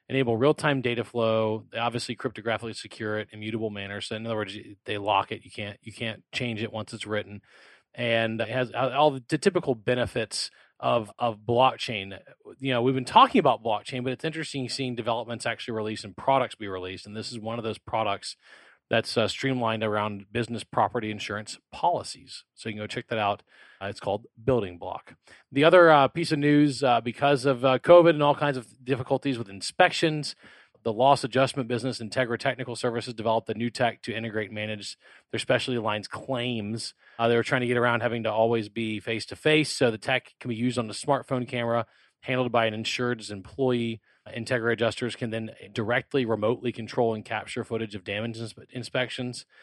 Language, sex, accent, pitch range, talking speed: English, male, American, 110-130 Hz, 195 wpm